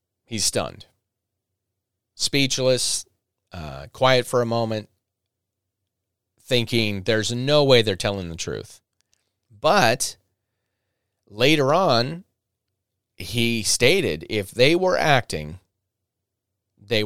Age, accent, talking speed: 30-49, American, 90 wpm